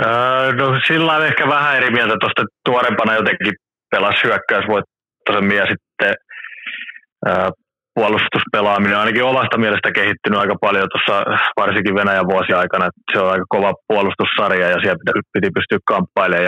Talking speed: 125 wpm